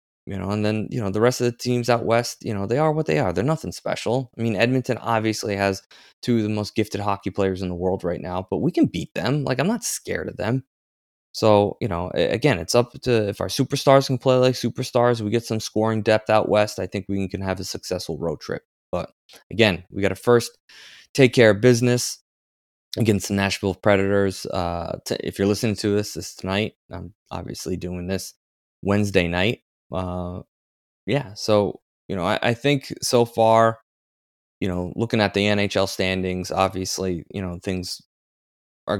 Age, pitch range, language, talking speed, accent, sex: 20-39, 95-115 Hz, English, 205 wpm, American, male